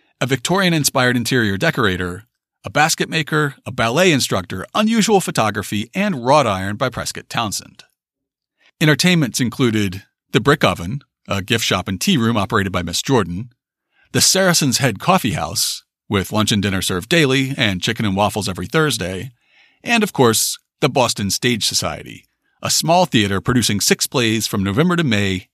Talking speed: 155 wpm